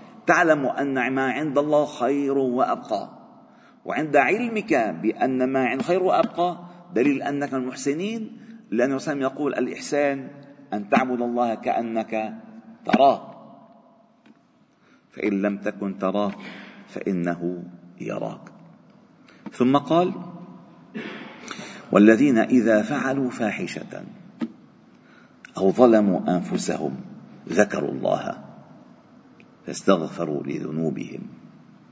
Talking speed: 85 wpm